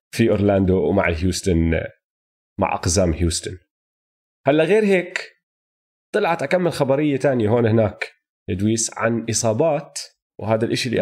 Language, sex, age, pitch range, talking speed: Arabic, male, 30-49, 110-150 Hz, 120 wpm